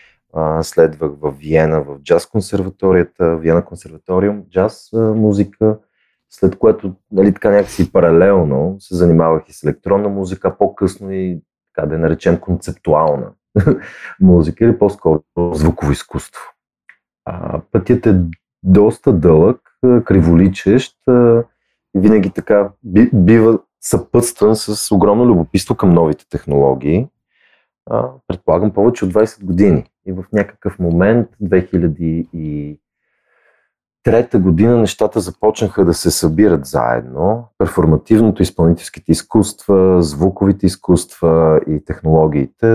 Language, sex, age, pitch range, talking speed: Bulgarian, male, 30-49, 85-100 Hz, 110 wpm